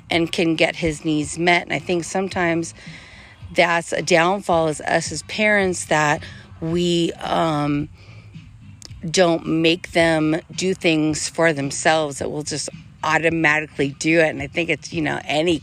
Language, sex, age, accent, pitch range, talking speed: English, female, 40-59, American, 145-180 Hz, 155 wpm